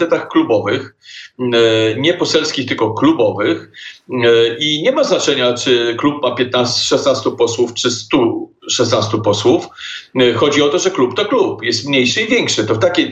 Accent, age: native, 40-59